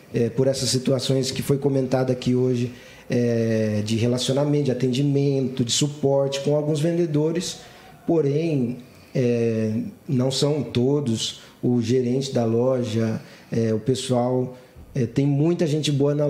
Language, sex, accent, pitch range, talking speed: Portuguese, male, Brazilian, 125-160 Hz, 135 wpm